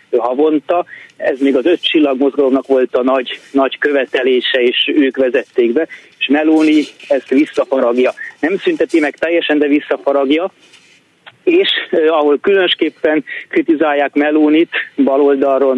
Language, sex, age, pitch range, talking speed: Hungarian, male, 30-49, 135-155 Hz, 120 wpm